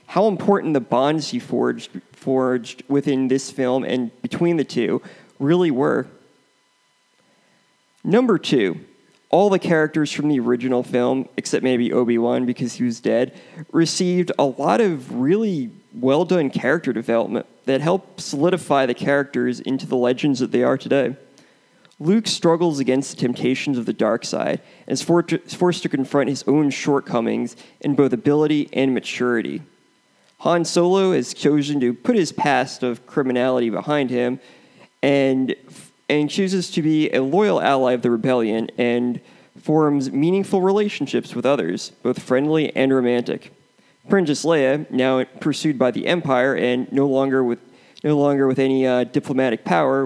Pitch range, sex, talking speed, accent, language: 125-160 Hz, male, 150 wpm, American, English